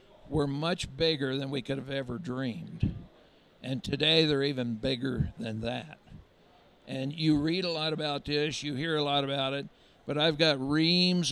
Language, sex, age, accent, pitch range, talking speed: English, male, 60-79, American, 135-170 Hz, 175 wpm